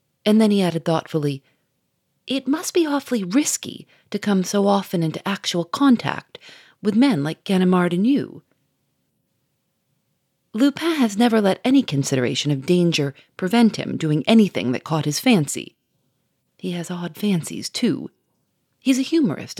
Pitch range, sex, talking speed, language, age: 155-230 Hz, female, 145 wpm, English, 40-59